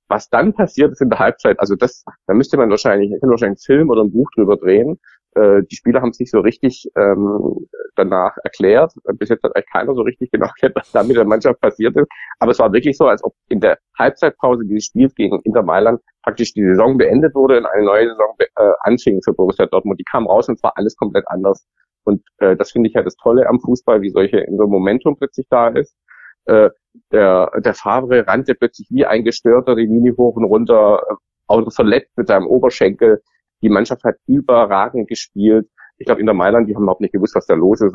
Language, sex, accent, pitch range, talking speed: German, male, German, 100-135 Hz, 230 wpm